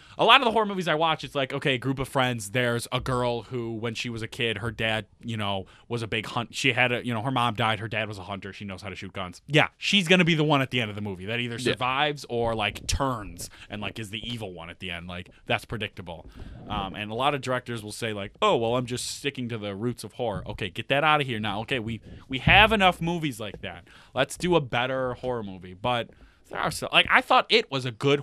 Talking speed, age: 275 wpm, 20-39